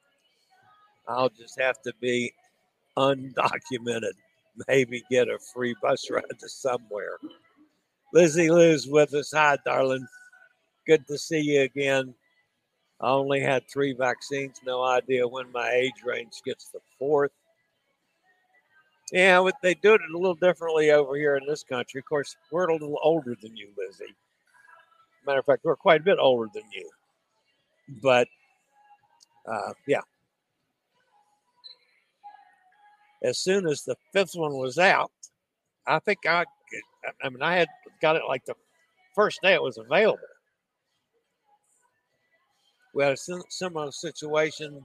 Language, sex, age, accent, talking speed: English, male, 60-79, American, 135 wpm